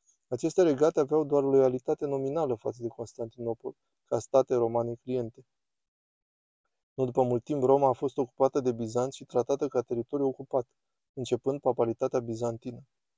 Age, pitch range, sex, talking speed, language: 20-39, 120-135 Hz, male, 140 wpm, Romanian